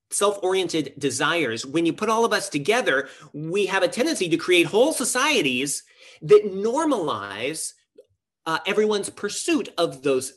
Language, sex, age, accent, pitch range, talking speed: English, male, 30-49, American, 115-190 Hz, 145 wpm